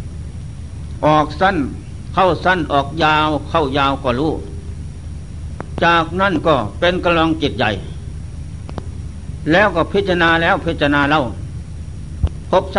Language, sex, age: Thai, male, 60-79